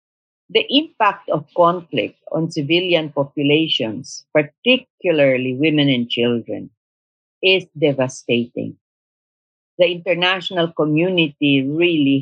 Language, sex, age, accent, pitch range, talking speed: English, female, 50-69, Filipino, 140-175 Hz, 85 wpm